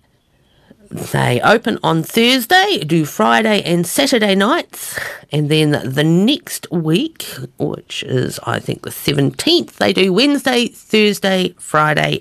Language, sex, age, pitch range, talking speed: English, female, 50-69, 150-245 Hz, 125 wpm